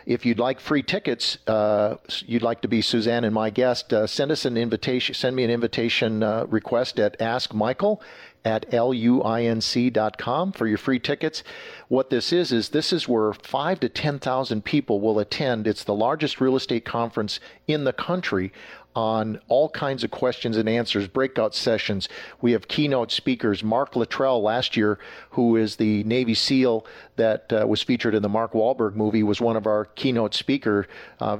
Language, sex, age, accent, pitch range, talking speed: English, male, 50-69, American, 110-130 Hz, 195 wpm